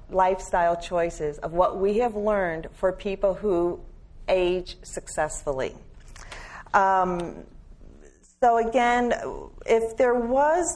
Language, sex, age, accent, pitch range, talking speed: English, female, 40-59, American, 175-225 Hz, 100 wpm